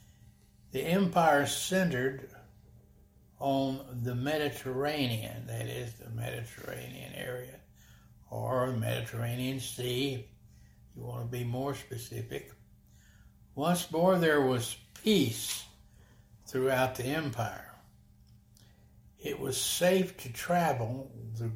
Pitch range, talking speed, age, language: 115-135 Hz, 100 wpm, 60-79, English